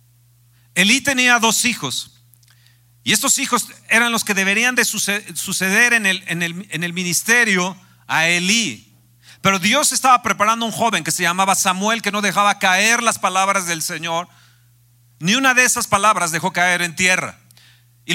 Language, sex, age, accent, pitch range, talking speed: Spanish, male, 40-59, Mexican, 155-220 Hz, 155 wpm